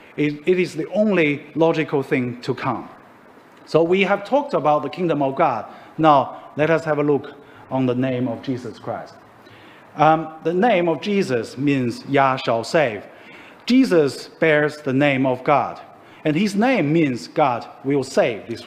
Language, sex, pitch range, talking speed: English, male, 135-165 Hz, 170 wpm